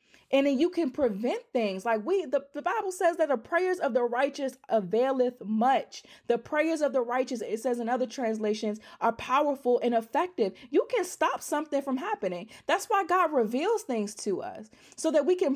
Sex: female